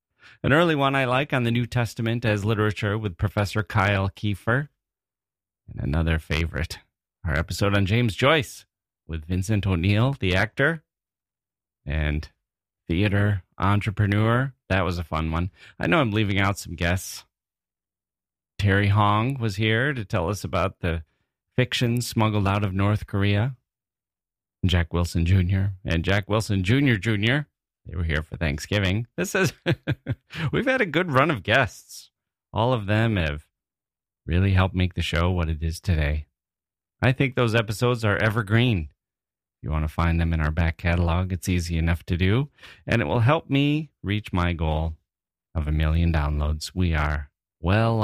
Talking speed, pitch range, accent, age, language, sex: 160 wpm, 85-115 Hz, American, 30-49, English, male